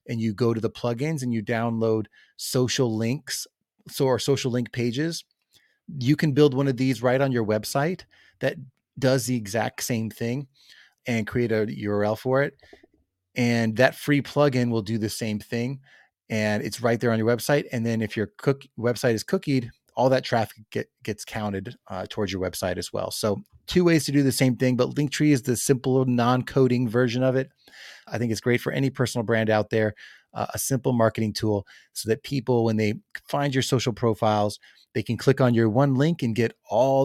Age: 30-49